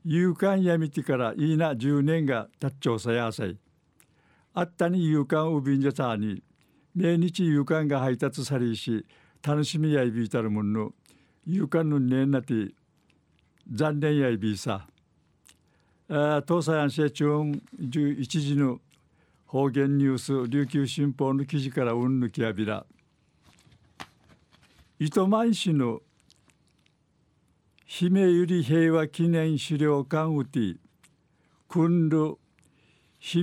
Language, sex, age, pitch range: Japanese, male, 60-79, 130-160 Hz